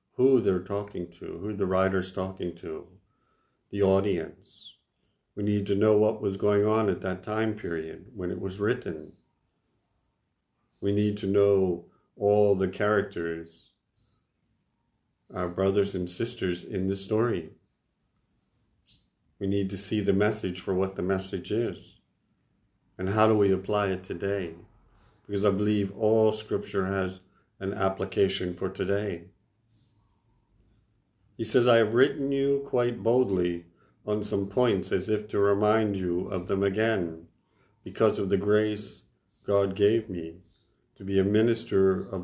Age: 50-69